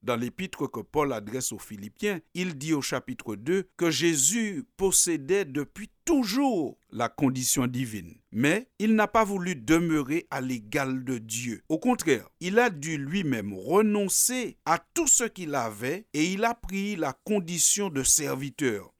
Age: 50-69